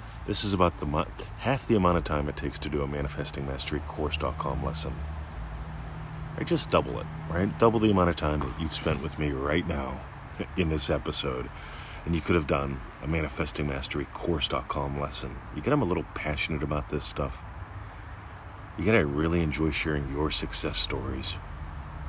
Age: 40-59